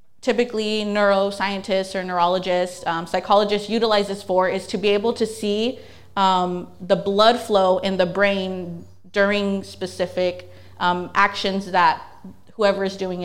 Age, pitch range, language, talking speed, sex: 30-49, 180-220 Hz, English, 135 wpm, female